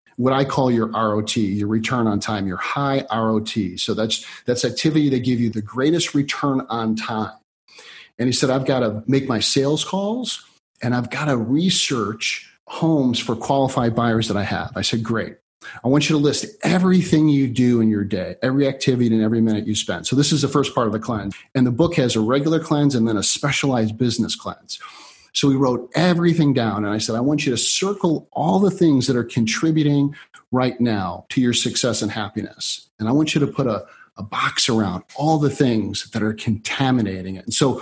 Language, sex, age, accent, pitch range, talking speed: English, male, 40-59, American, 110-145 Hz, 215 wpm